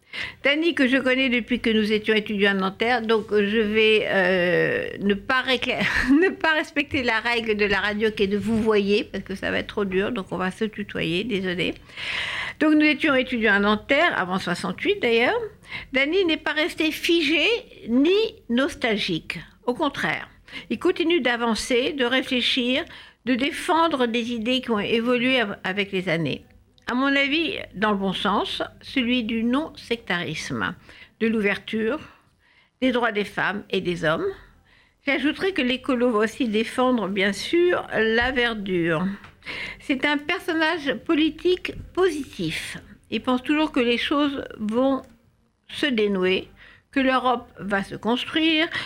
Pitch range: 210-285 Hz